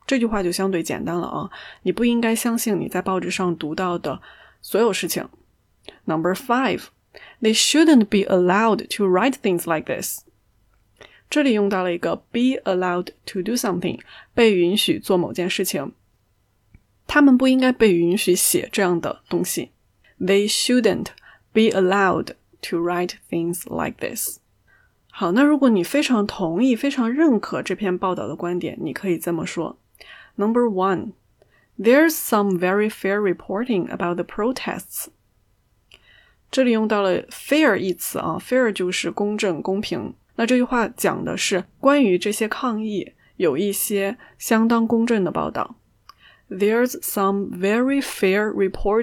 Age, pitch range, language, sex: 20-39, 185-235 Hz, Chinese, female